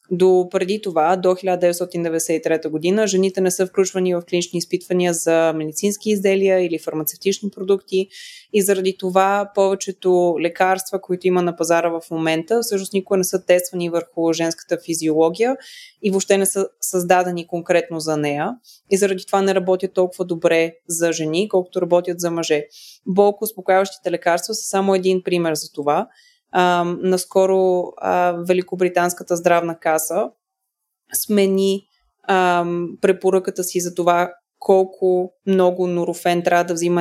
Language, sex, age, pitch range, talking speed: Bulgarian, female, 20-39, 170-190 Hz, 135 wpm